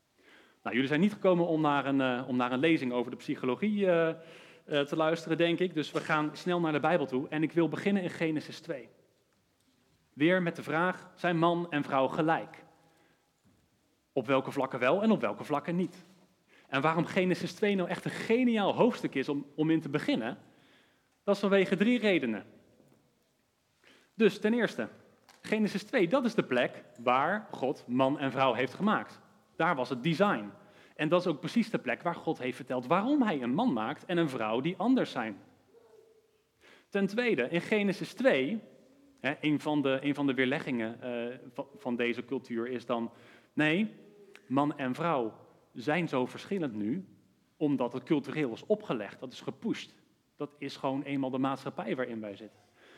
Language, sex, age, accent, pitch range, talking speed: Dutch, male, 40-59, Dutch, 135-190 Hz, 175 wpm